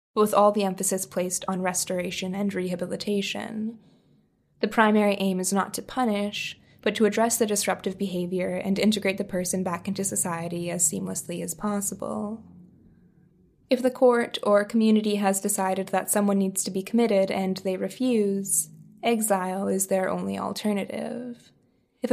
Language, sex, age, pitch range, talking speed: English, female, 20-39, 190-220 Hz, 150 wpm